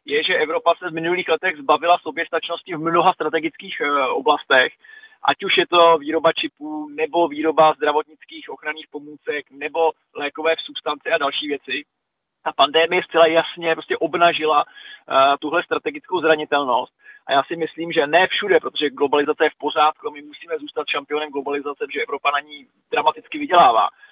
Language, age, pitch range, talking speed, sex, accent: Czech, 20-39, 150-175 Hz, 160 wpm, male, native